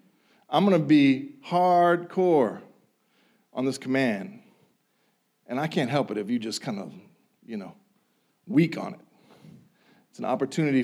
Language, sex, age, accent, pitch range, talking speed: English, male, 40-59, American, 140-195 Hz, 145 wpm